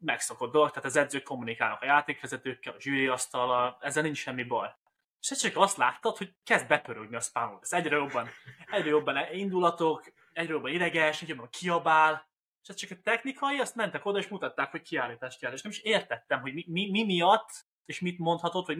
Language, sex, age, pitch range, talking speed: Hungarian, male, 20-39, 130-180 Hz, 200 wpm